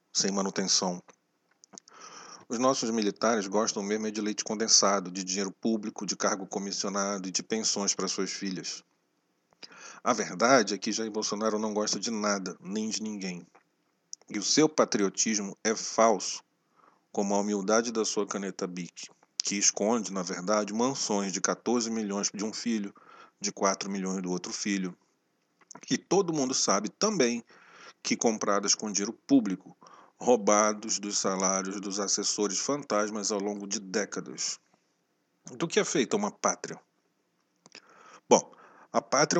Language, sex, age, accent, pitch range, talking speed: Portuguese, male, 40-59, Brazilian, 95-115 Hz, 145 wpm